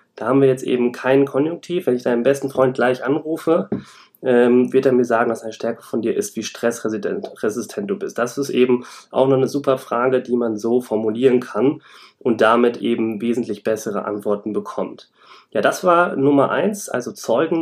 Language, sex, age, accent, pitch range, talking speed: German, male, 30-49, German, 120-145 Hz, 185 wpm